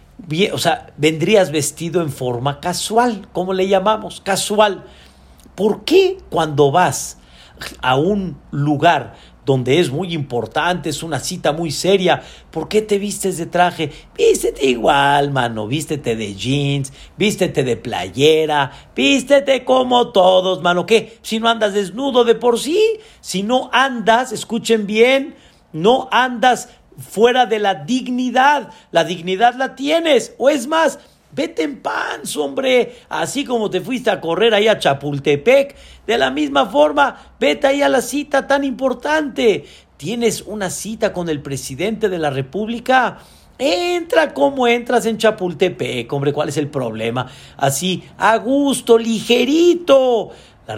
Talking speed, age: 140 wpm, 50-69